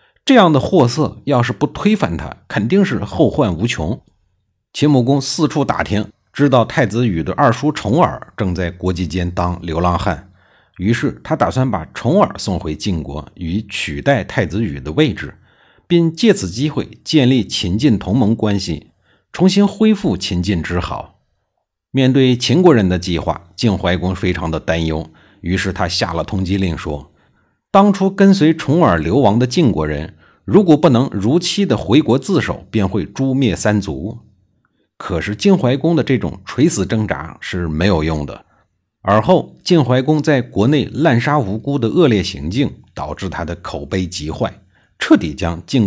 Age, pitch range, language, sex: 50-69, 90-140 Hz, Chinese, male